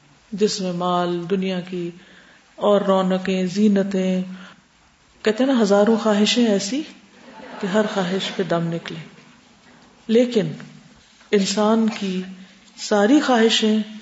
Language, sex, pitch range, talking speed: Urdu, female, 190-230 Hz, 105 wpm